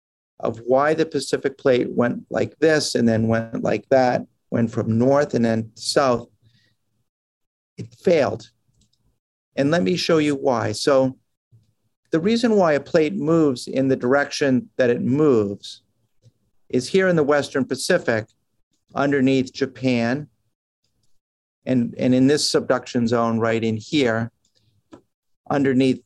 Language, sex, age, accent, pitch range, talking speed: English, male, 50-69, American, 115-145 Hz, 135 wpm